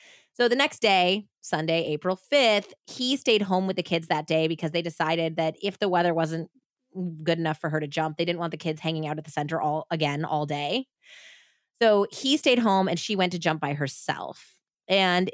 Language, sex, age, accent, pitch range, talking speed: English, female, 20-39, American, 160-210 Hz, 215 wpm